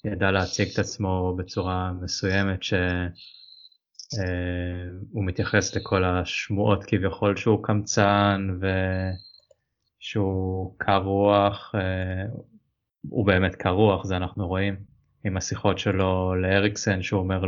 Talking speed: 95 wpm